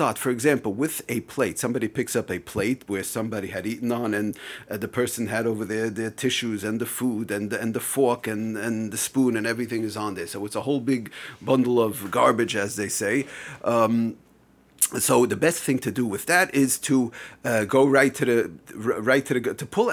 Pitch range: 105-130 Hz